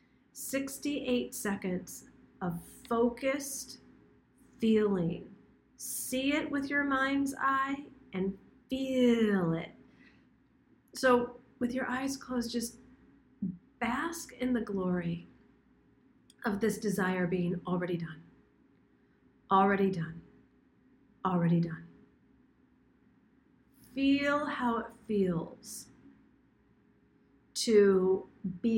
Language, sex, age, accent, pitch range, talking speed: English, female, 40-59, American, 220-285 Hz, 85 wpm